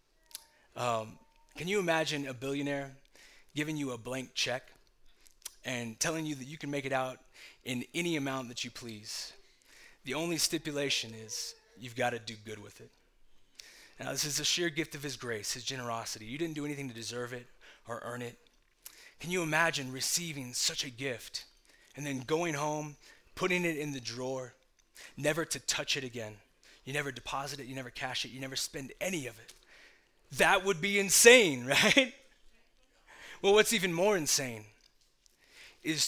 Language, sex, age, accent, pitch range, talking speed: English, male, 20-39, American, 125-150 Hz, 175 wpm